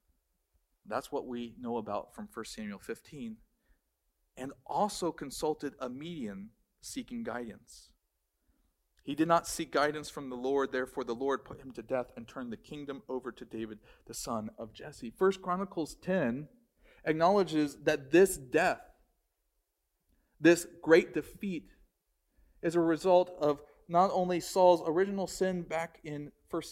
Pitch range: 150-190 Hz